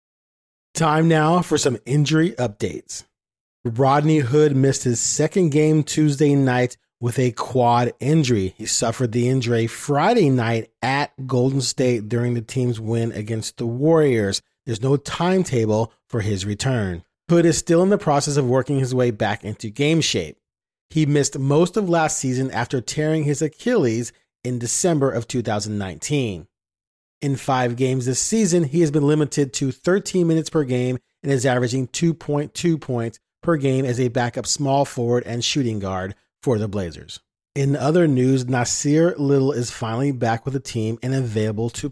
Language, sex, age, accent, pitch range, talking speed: English, male, 40-59, American, 120-150 Hz, 165 wpm